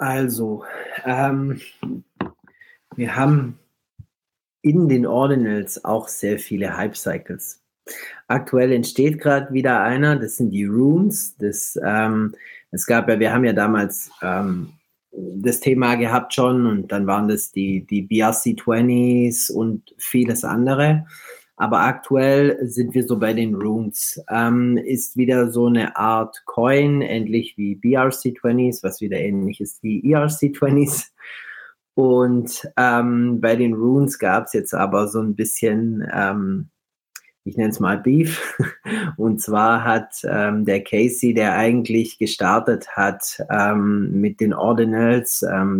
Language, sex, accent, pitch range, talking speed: German, male, German, 110-135 Hz, 125 wpm